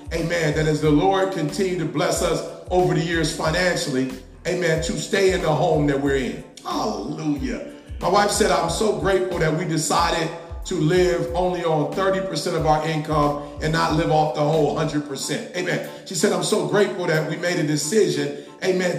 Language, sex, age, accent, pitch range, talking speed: English, male, 30-49, American, 160-220 Hz, 185 wpm